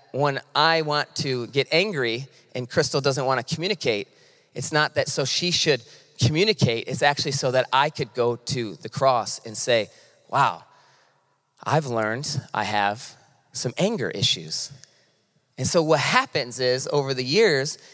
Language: English